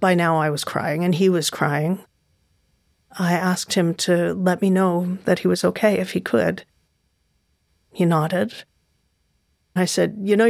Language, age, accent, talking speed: English, 40-59, American, 165 wpm